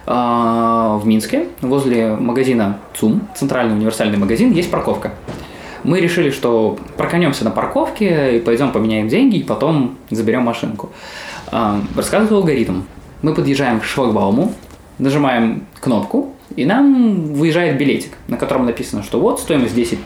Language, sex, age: Russian, male, 20-39